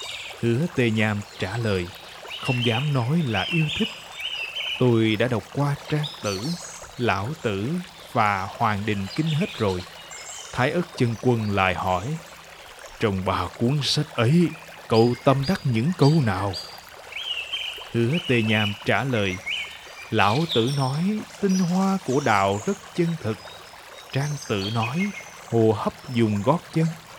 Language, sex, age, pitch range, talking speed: Vietnamese, male, 20-39, 110-160 Hz, 145 wpm